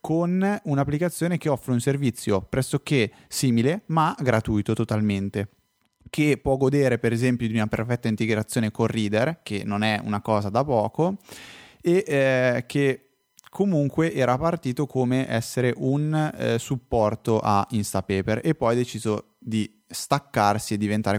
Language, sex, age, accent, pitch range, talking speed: Italian, male, 20-39, native, 105-135 Hz, 140 wpm